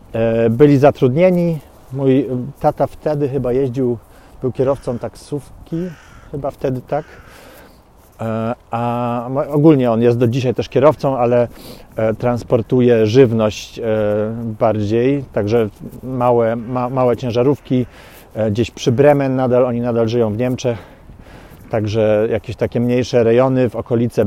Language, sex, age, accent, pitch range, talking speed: Polish, male, 40-59, native, 115-130 Hz, 115 wpm